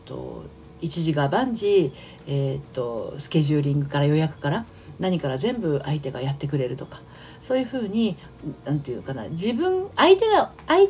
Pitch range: 145-235 Hz